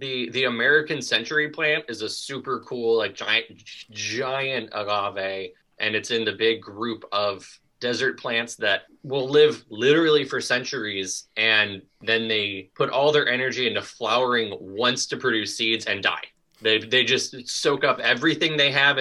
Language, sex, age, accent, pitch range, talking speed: English, male, 20-39, American, 110-150 Hz, 165 wpm